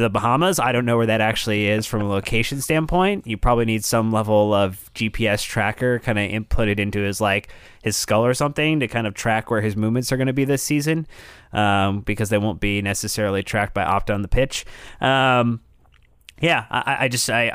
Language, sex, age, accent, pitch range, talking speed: English, male, 20-39, American, 105-120 Hz, 210 wpm